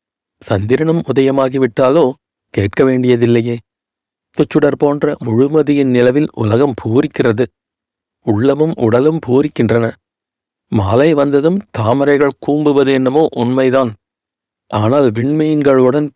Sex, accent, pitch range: male, native, 115-145 Hz